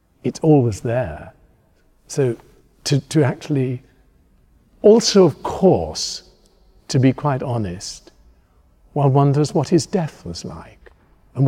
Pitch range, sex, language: 100-130 Hz, male, English